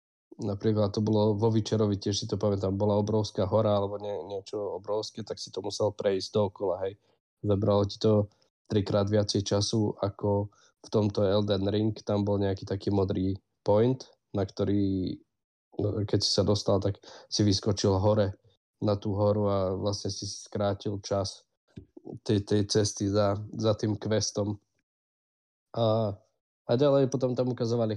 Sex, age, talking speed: male, 20-39, 150 wpm